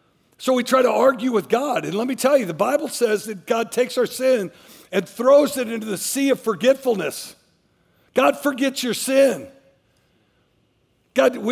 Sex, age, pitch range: male, 50-69, 220-265 Hz